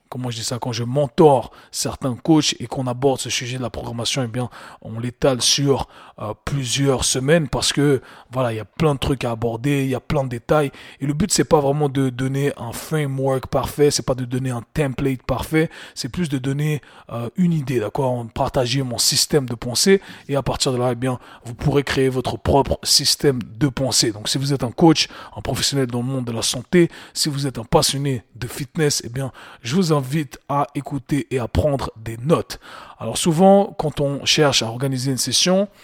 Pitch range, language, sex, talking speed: 125-150 Hz, French, male, 230 wpm